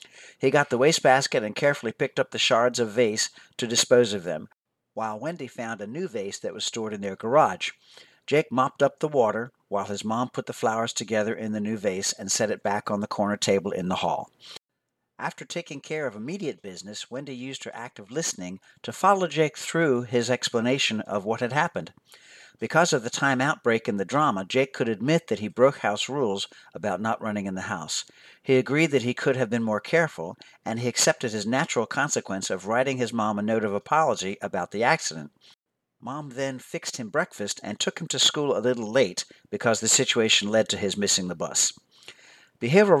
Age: 50-69